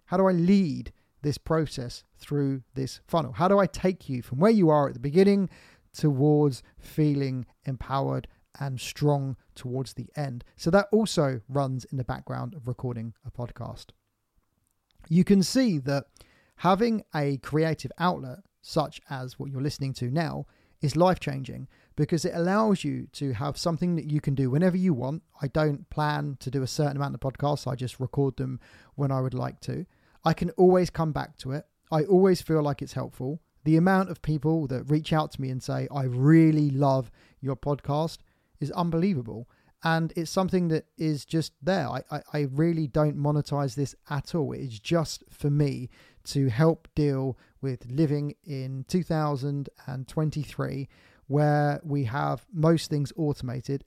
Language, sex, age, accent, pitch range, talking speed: English, male, 30-49, British, 130-160 Hz, 175 wpm